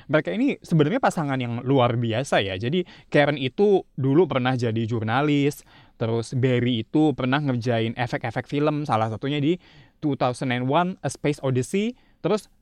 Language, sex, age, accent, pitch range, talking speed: Indonesian, male, 20-39, native, 120-160 Hz, 145 wpm